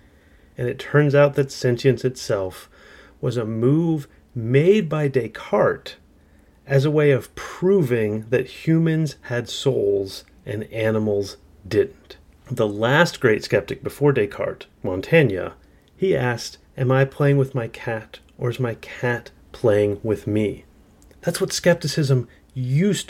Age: 30-49